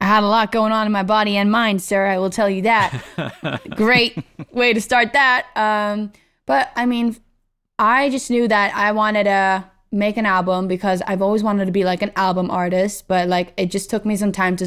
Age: 20-39